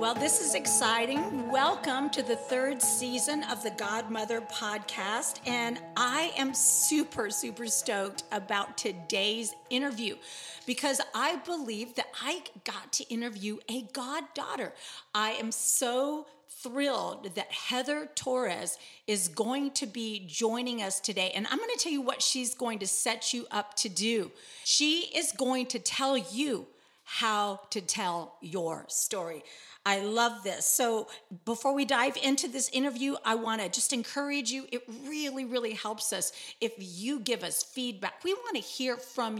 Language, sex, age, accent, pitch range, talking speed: English, female, 40-59, American, 210-270 Hz, 155 wpm